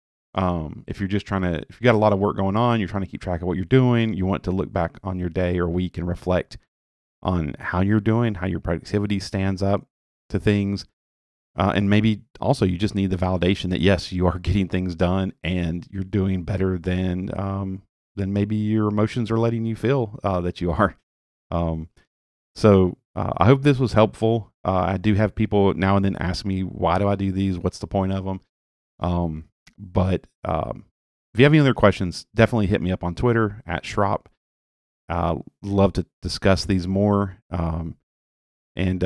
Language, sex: English, male